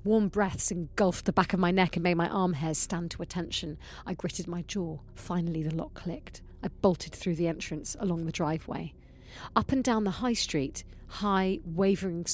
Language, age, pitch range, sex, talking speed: English, 30-49, 155-190 Hz, female, 195 wpm